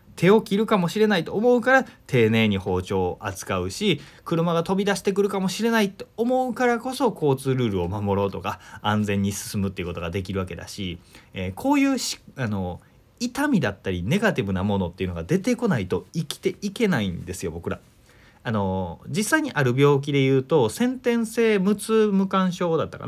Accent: native